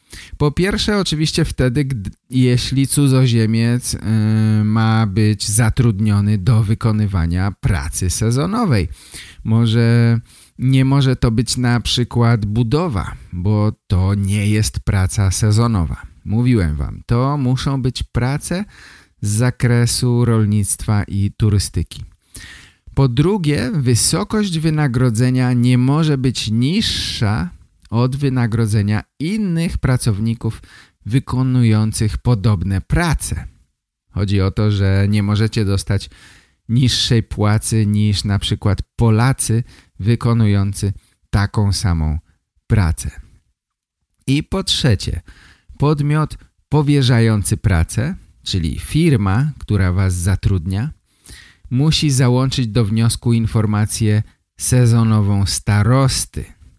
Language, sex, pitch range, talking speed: Polish, male, 100-125 Hz, 95 wpm